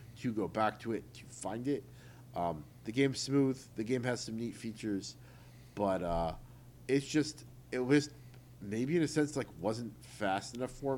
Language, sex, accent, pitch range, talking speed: English, male, American, 105-135 Hz, 180 wpm